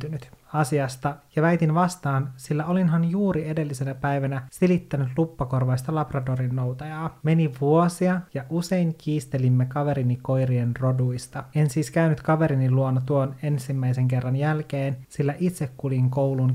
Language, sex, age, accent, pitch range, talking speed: Finnish, male, 30-49, native, 130-155 Hz, 120 wpm